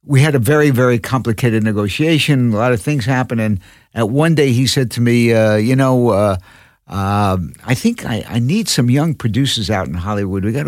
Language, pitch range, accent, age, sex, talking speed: English, 100-135 Hz, American, 60-79, male, 215 wpm